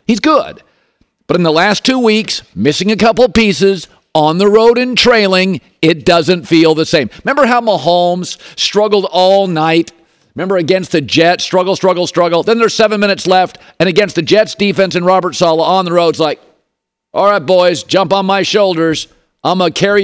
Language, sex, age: English, male, 50-69